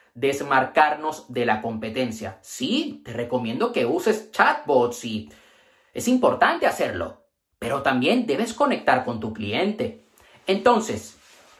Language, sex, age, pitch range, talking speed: Spanish, male, 30-49, 140-215 Hz, 115 wpm